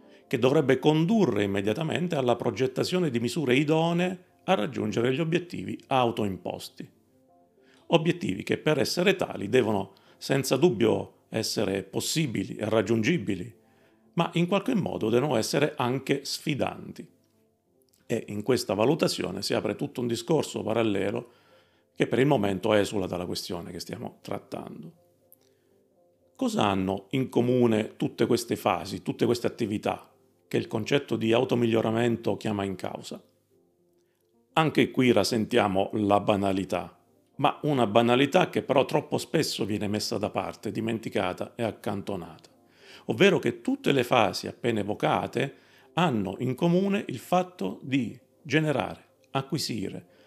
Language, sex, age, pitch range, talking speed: Italian, male, 40-59, 100-150 Hz, 125 wpm